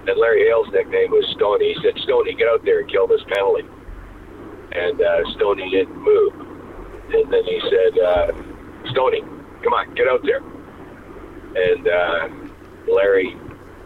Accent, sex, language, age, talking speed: American, male, English, 50-69, 150 wpm